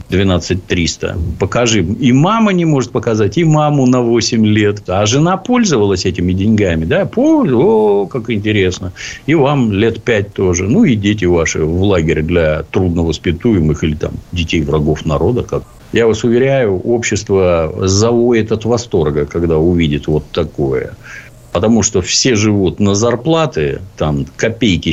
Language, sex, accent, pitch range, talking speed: Russian, male, native, 85-125 Hz, 145 wpm